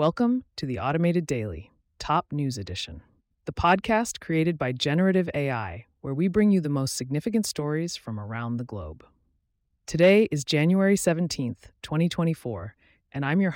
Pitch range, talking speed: 115-165 Hz, 150 wpm